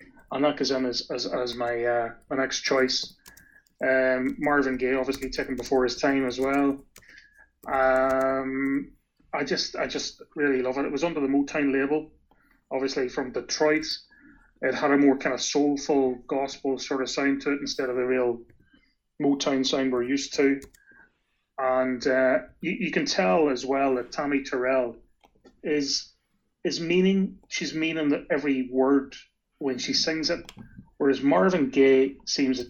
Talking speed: 160 wpm